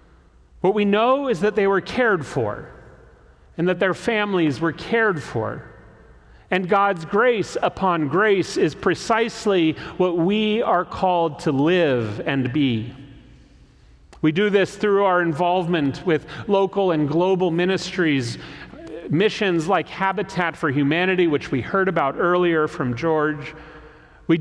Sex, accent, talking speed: male, American, 135 wpm